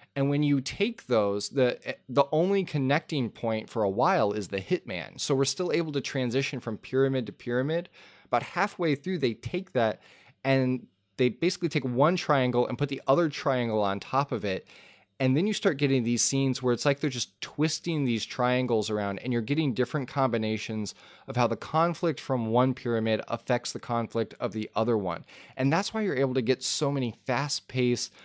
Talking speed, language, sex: 200 wpm, English, male